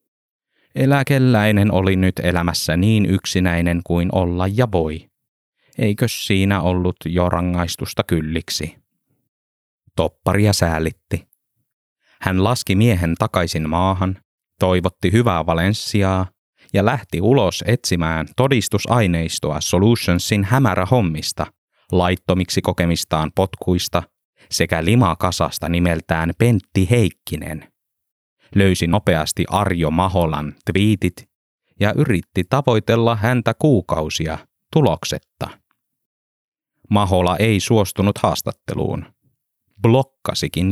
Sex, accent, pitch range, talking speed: male, native, 85-105 Hz, 85 wpm